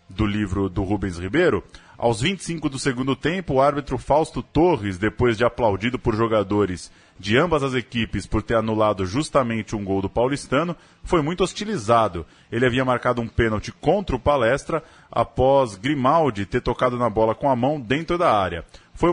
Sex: male